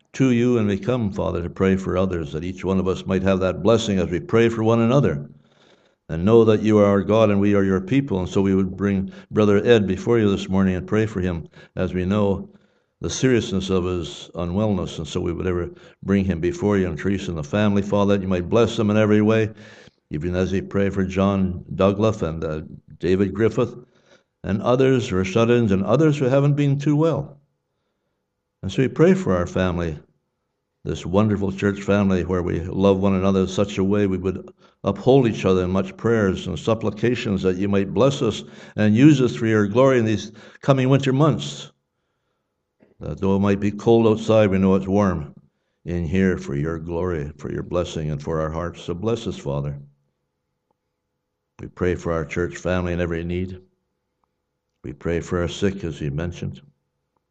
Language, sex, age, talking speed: English, male, 60-79, 205 wpm